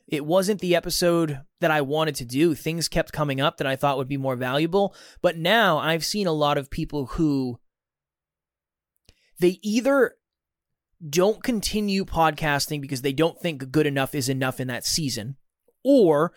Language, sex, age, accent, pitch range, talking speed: English, male, 20-39, American, 135-175 Hz, 170 wpm